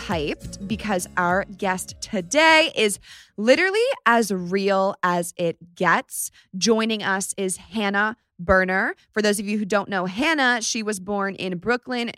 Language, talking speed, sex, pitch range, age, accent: English, 150 wpm, female, 190-225 Hz, 20-39, American